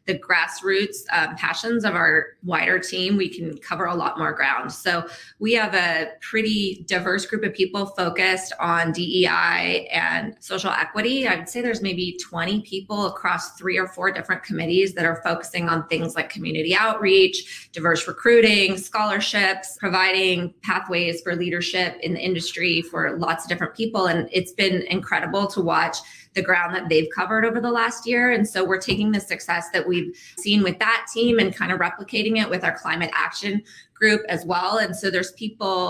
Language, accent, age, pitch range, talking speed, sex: English, American, 20-39, 170-210 Hz, 180 wpm, female